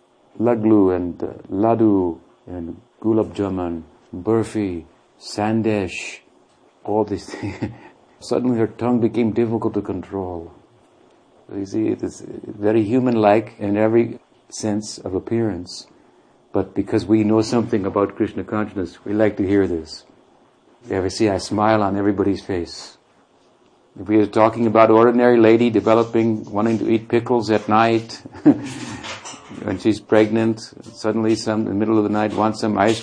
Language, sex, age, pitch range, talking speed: English, male, 50-69, 95-115 Hz, 140 wpm